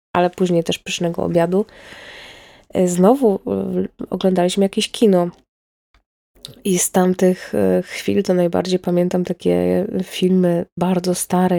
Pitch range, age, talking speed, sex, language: 180-210 Hz, 20-39, 105 wpm, female, Polish